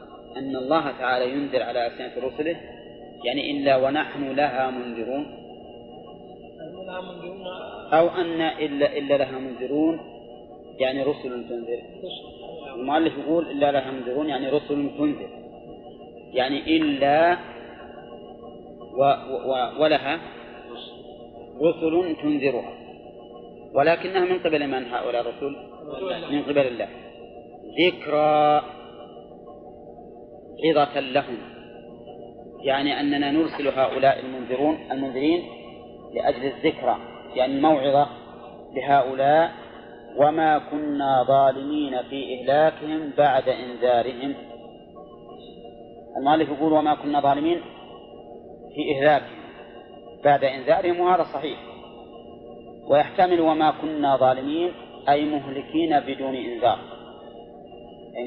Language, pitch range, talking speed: Arabic, 125-155 Hz, 85 wpm